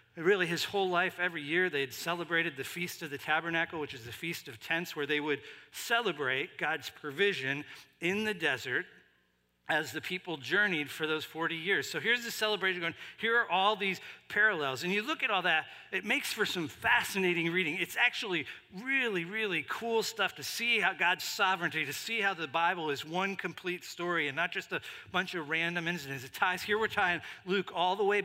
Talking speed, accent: 200 wpm, American